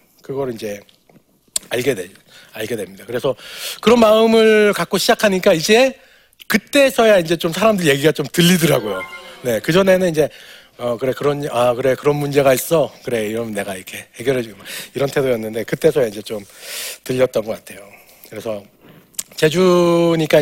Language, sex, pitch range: Korean, male, 115-180 Hz